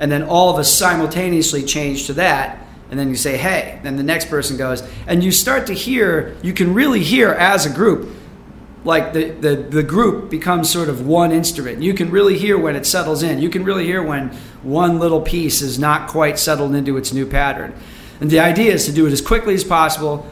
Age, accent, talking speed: 40-59, American, 225 wpm